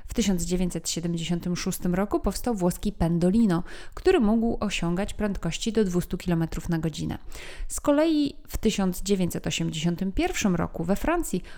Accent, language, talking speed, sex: native, Polish, 115 wpm, female